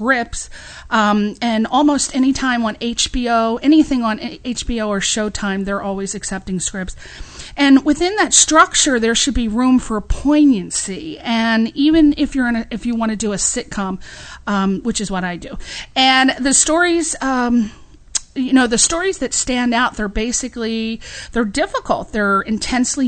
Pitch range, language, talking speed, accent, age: 215-270 Hz, English, 165 wpm, American, 40-59